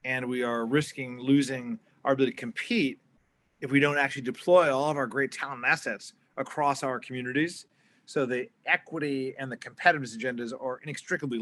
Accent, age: American, 30-49